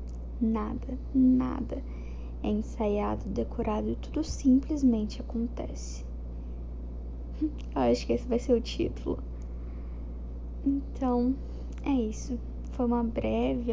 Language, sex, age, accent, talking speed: Portuguese, female, 10-29, Brazilian, 100 wpm